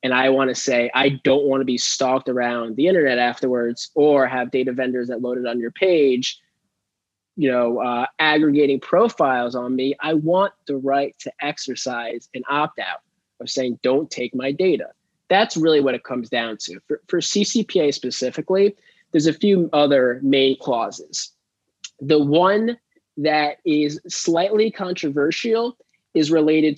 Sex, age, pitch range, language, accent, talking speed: male, 20-39, 125-165 Hz, English, American, 155 wpm